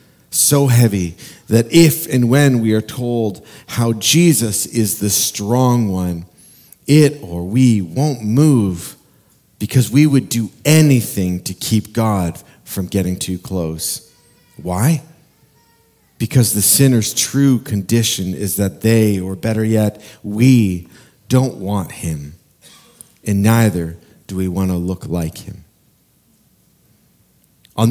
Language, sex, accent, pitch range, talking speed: English, male, American, 95-125 Hz, 125 wpm